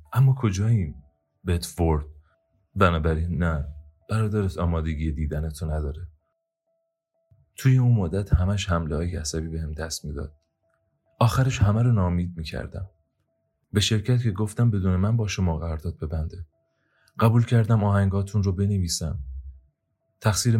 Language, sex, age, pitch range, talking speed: Persian, male, 30-49, 80-105 Hz, 120 wpm